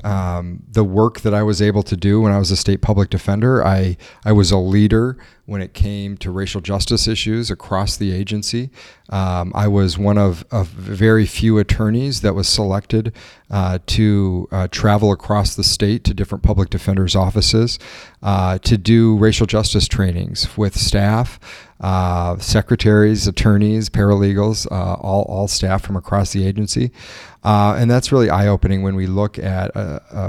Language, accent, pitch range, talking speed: English, American, 95-105 Hz, 170 wpm